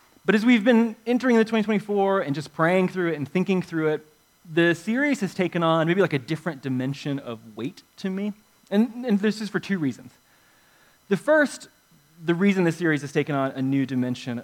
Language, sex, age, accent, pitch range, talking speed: English, male, 20-39, American, 140-195 Hz, 205 wpm